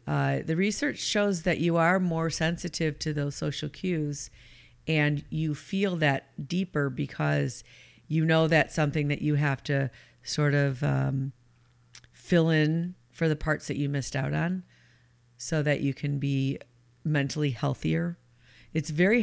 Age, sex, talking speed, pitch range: 40-59, female, 155 wpm, 125-155 Hz